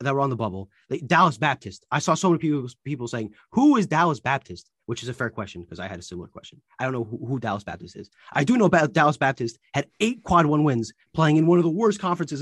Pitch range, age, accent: 120-160 Hz, 30-49, American